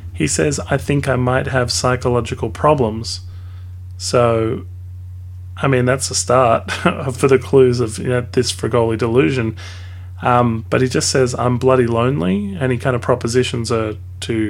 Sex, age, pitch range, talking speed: male, 30-49, 90-125 Hz, 160 wpm